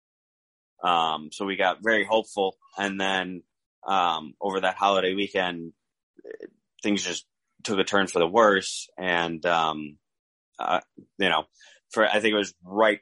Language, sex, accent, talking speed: English, male, American, 145 wpm